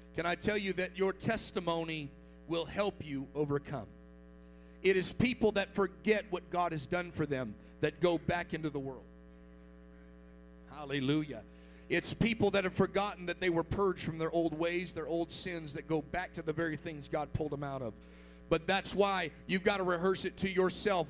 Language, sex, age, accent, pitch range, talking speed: English, male, 40-59, American, 110-175 Hz, 190 wpm